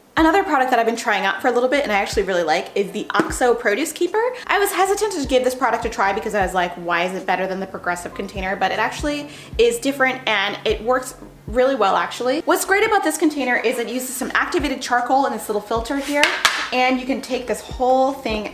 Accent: American